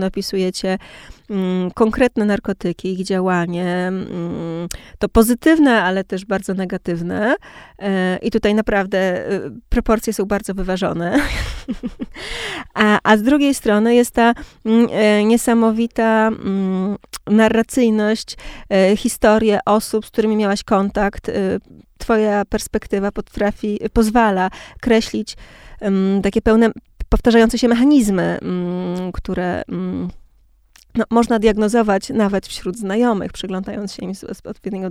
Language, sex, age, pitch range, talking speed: Polish, female, 20-39, 190-230 Hz, 110 wpm